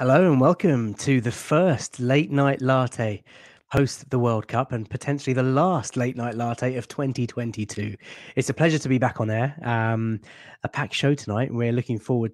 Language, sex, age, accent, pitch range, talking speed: English, male, 20-39, British, 110-130 Hz, 185 wpm